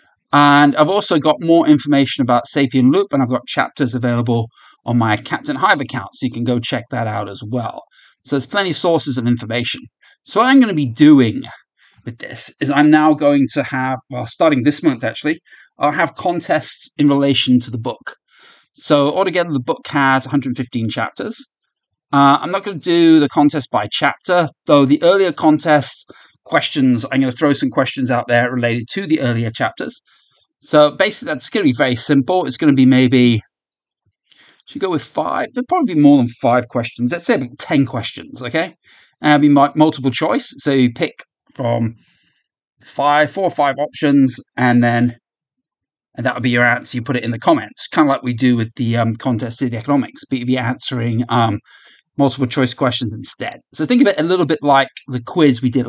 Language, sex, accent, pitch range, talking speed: English, male, British, 125-150 Hz, 205 wpm